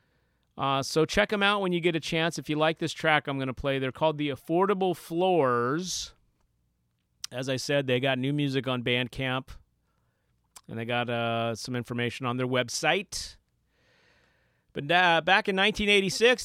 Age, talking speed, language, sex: 40-59, 170 wpm, English, male